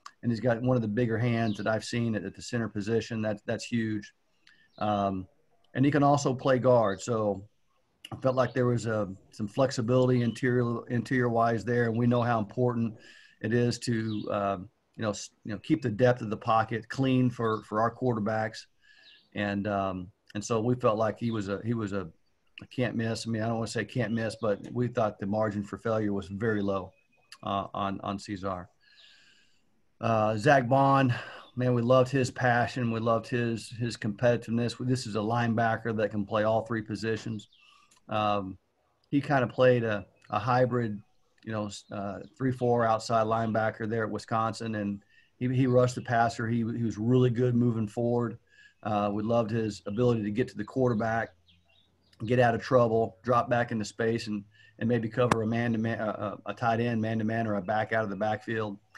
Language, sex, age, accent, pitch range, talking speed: English, male, 50-69, American, 105-120 Hz, 195 wpm